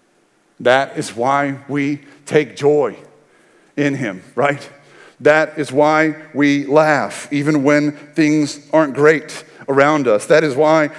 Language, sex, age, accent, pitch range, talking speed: English, male, 50-69, American, 150-225 Hz, 130 wpm